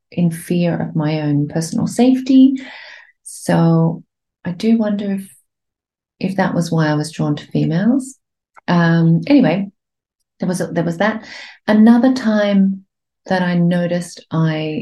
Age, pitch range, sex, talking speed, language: 40-59, 160-210 Hz, female, 140 wpm, English